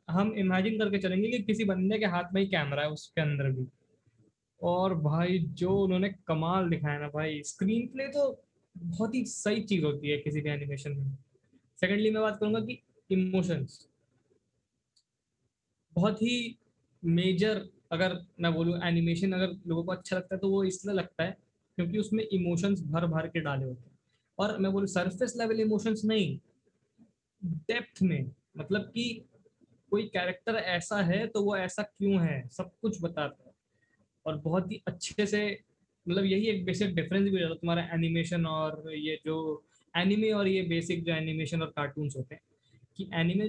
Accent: native